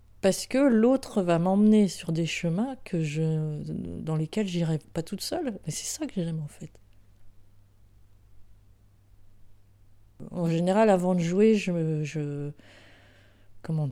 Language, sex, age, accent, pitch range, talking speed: French, female, 30-49, French, 115-170 Hz, 135 wpm